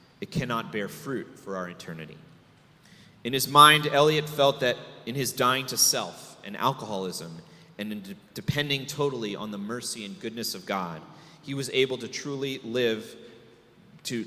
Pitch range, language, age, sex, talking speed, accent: 105-140 Hz, English, 30-49, male, 165 wpm, American